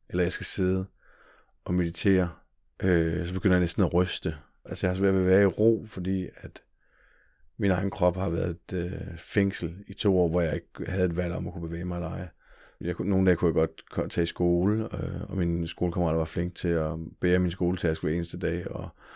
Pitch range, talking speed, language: 85-95 Hz, 230 wpm, Danish